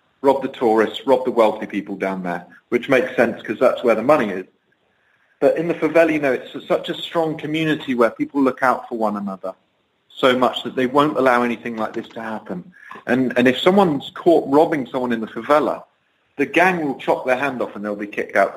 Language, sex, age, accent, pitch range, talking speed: English, male, 40-59, British, 110-155 Hz, 225 wpm